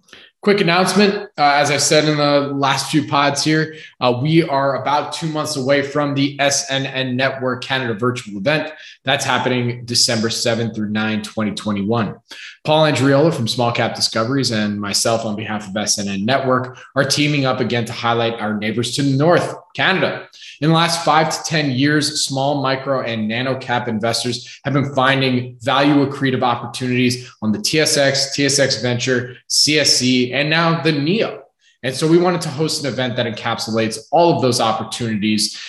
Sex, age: male, 20-39